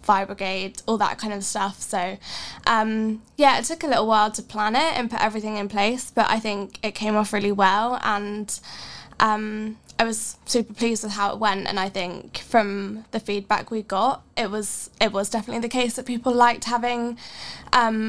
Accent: British